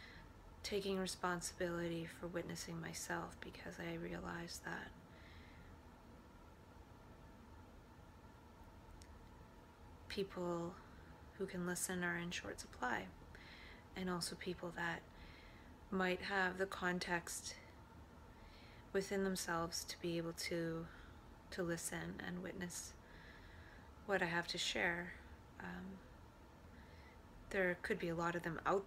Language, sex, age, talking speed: English, female, 20-39, 100 wpm